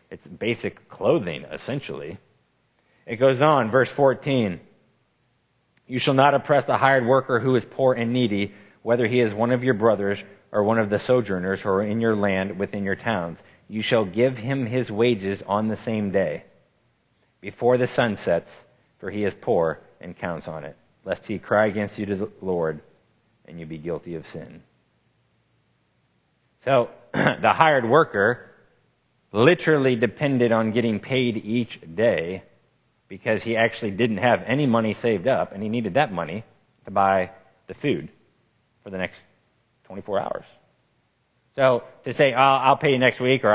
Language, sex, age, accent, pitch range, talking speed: English, male, 30-49, American, 100-125 Hz, 165 wpm